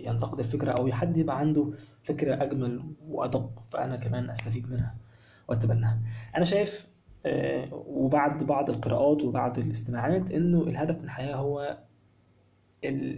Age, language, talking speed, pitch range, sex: 20-39, Arabic, 120 wpm, 115-145 Hz, male